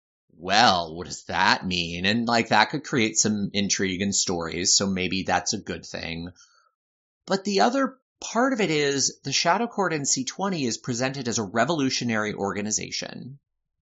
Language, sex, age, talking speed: English, male, 30-49, 165 wpm